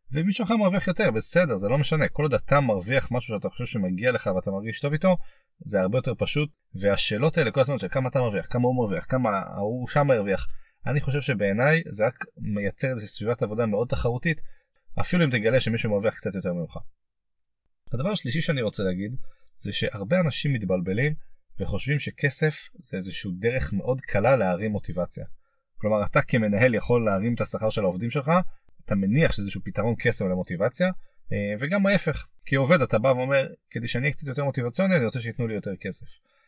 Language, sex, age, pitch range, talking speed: Hebrew, male, 30-49, 105-150 Hz, 170 wpm